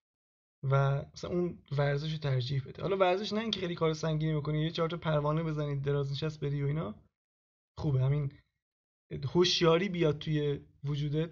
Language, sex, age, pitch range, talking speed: Persian, male, 20-39, 145-165 Hz, 155 wpm